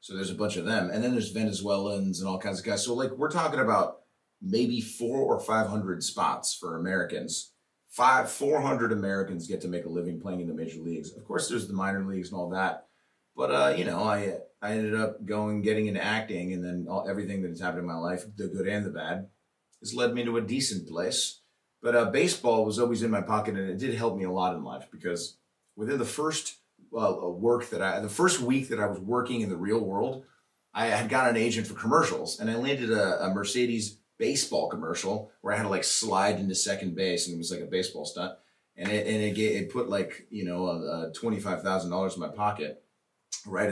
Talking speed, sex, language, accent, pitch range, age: 235 wpm, male, English, American, 90-115 Hz, 30-49